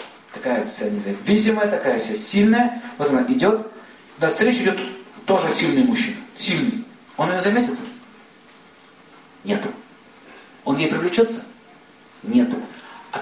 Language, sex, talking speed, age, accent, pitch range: Russian, male, 110 wpm, 40-59, native, 185-240 Hz